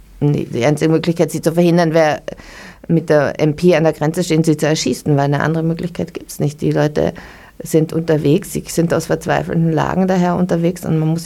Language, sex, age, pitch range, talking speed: German, female, 50-69, 145-170 Hz, 205 wpm